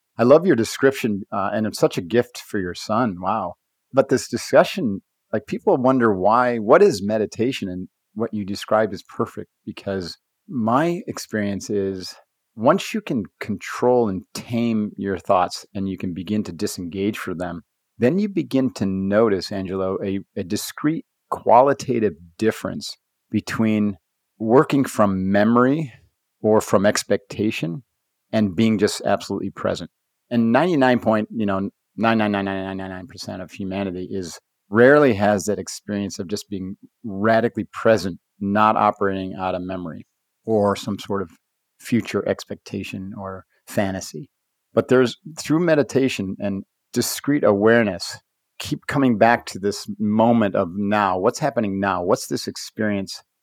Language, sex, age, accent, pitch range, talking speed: English, male, 40-59, American, 95-115 Hz, 145 wpm